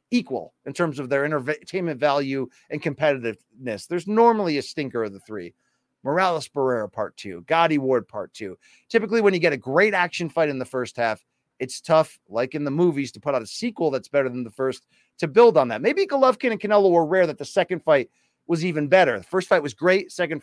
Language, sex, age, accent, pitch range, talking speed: English, male, 30-49, American, 130-185 Hz, 220 wpm